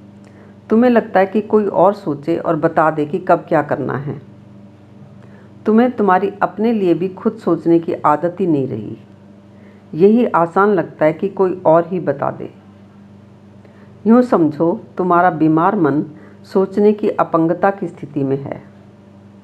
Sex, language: female, Hindi